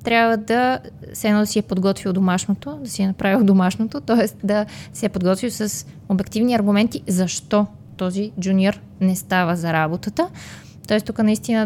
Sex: female